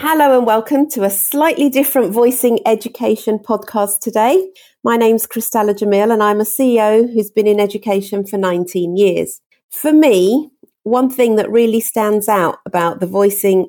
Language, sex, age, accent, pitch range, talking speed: English, female, 40-59, British, 190-240 Hz, 165 wpm